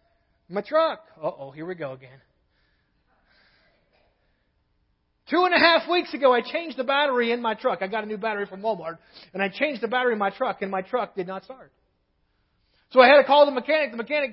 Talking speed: 215 wpm